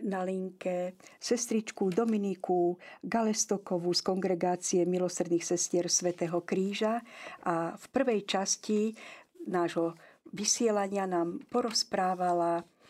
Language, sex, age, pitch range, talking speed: Slovak, female, 50-69, 175-210 Hz, 90 wpm